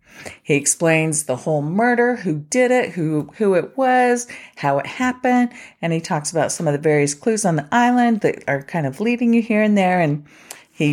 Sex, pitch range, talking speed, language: female, 130-170 Hz, 210 wpm, English